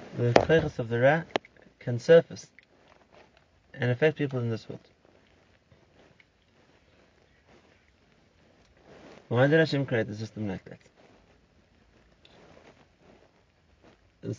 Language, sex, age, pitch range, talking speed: English, male, 30-49, 120-140 Hz, 90 wpm